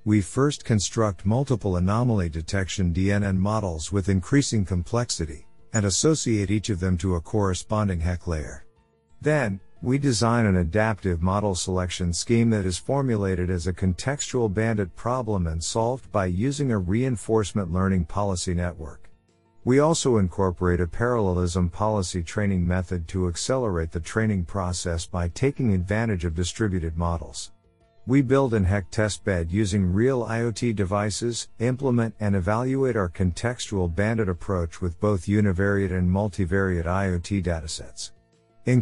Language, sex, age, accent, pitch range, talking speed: English, male, 50-69, American, 90-115 Hz, 140 wpm